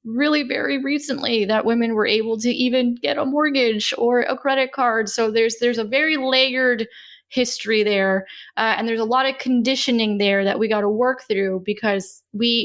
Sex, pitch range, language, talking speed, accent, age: female, 210-250 Hz, English, 190 wpm, American, 10-29